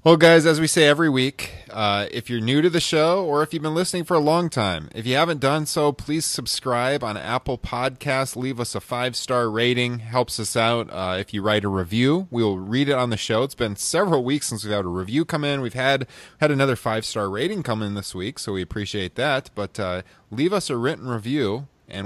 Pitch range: 105-140 Hz